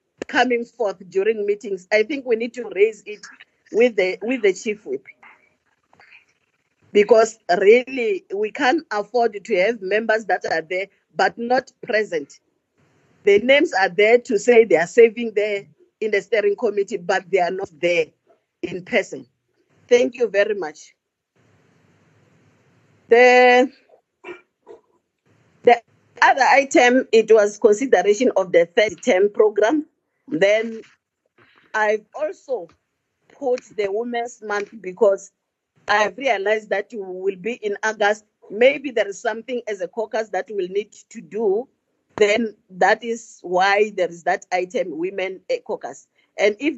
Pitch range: 195-255 Hz